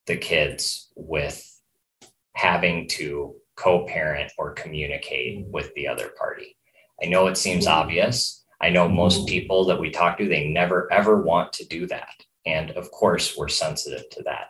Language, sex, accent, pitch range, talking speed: English, male, American, 85-105 Hz, 160 wpm